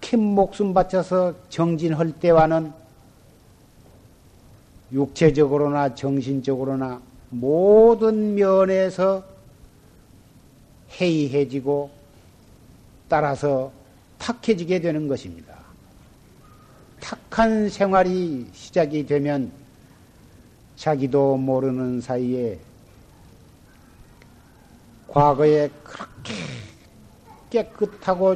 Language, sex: Korean, male